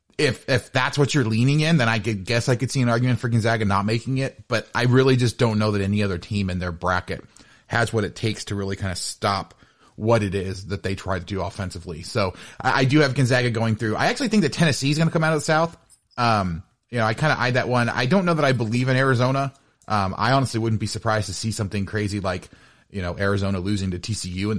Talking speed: 265 wpm